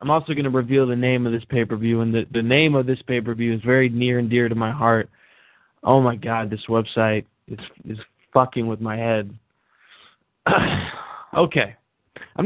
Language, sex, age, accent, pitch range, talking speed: English, male, 20-39, American, 115-130 Hz, 185 wpm